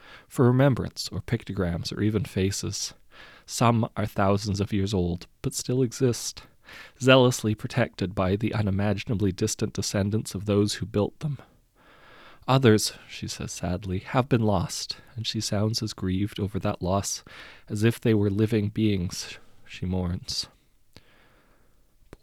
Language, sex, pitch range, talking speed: English, male, 95-120 Hz, 140 wpm